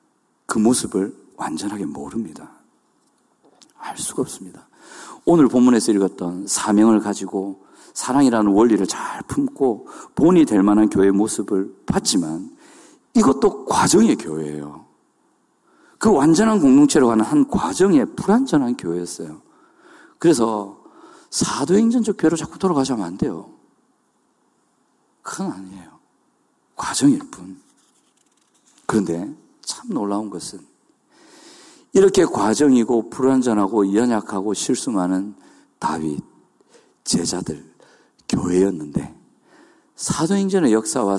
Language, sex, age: Korean, male, 40-59